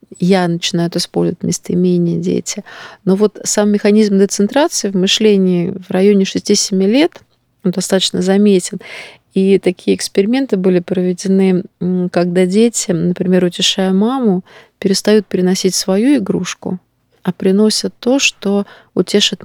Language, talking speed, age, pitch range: Russian, 120 wpm, 30-49, 180-210 Hz